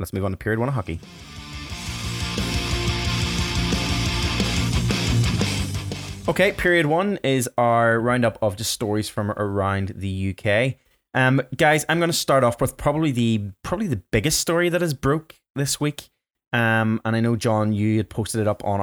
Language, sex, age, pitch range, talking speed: English, male, 20-39, 100-125 Hz, 160 wpm